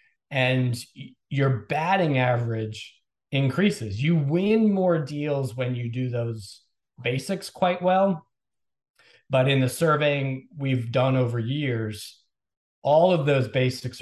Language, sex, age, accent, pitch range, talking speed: English, male, 40-59, American, 125-175 Hz, 120 wpm